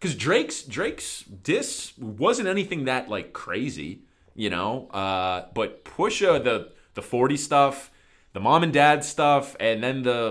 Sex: male